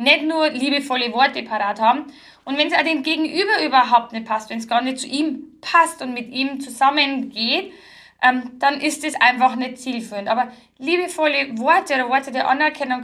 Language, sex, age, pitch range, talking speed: German, female, 10-29, 250-310 Hz, 185 wpm